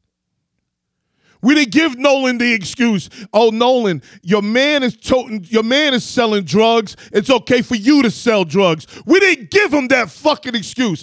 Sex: male